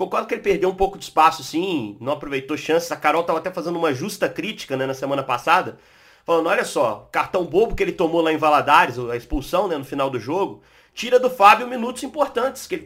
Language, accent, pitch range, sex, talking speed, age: Portuguese, Brazilian, 150-220 Hz, male, 230 wpm, 30-49